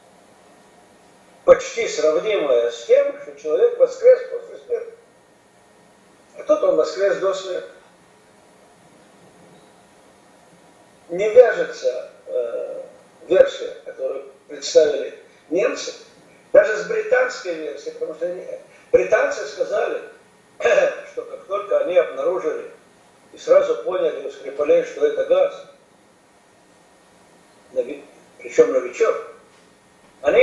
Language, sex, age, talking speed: Russian, male, 50-69, 95 wpm